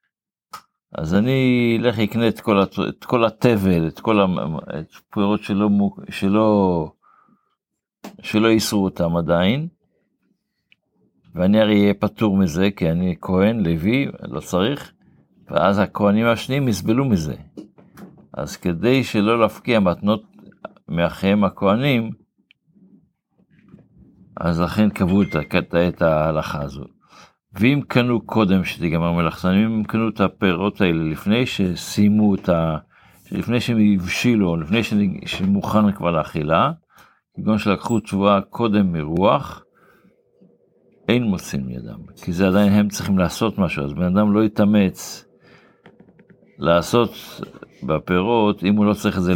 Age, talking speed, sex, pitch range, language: 60-79, 115 wpm, male, 90-110 Hz, Hebrew